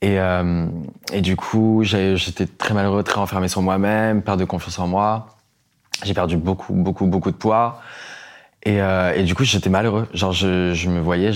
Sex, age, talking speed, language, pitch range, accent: male, 20-39, 190 wpm, French, 90-105 Hz, French